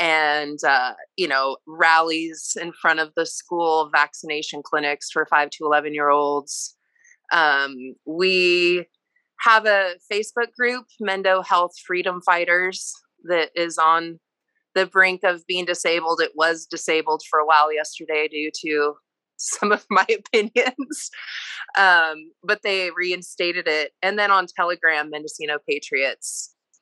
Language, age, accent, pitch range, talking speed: English, 20-39, American, 155-195 Hz, 135 wpm